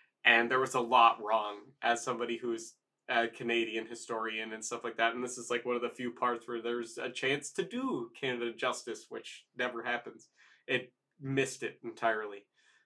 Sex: male